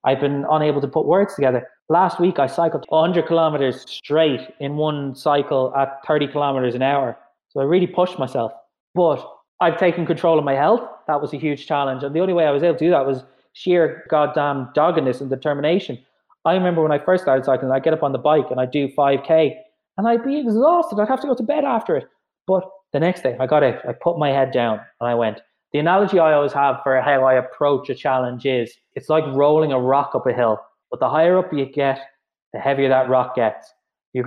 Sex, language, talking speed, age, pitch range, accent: male, English, 230 wpm, 20-39, 130-170 Hz, Irish